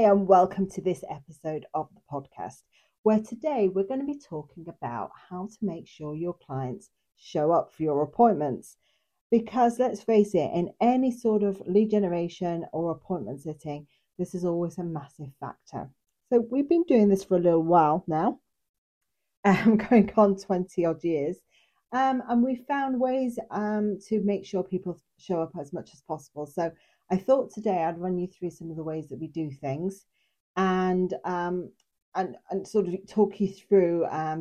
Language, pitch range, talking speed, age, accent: English, 165-215 Hz, 180 wpm, 40-59, British